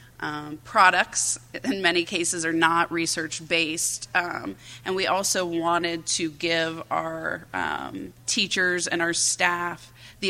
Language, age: English, 20-39